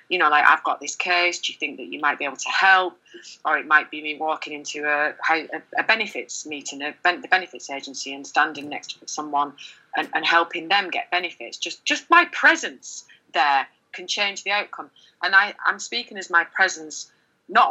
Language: English